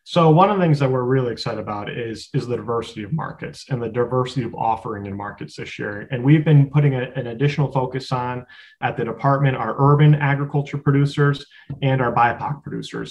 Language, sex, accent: English, male, American